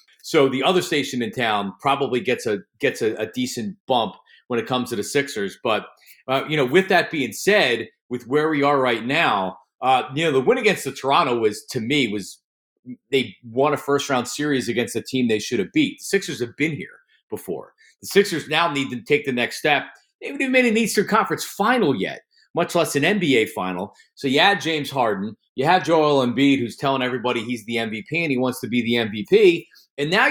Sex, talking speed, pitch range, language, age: male, 220 wpm, 130-195 Hz, English, 40-59